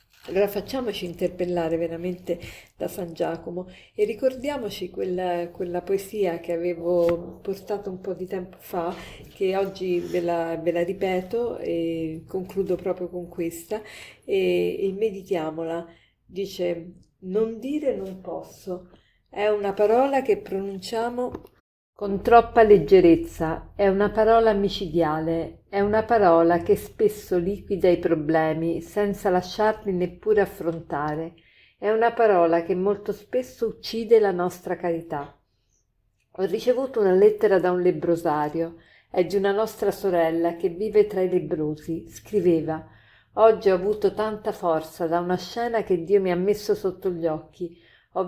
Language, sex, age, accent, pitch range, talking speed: Italian, female, 50-69, native, 170-205 Hz, 135 wpm